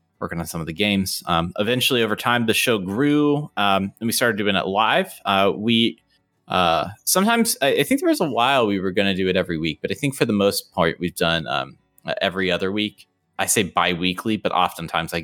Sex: male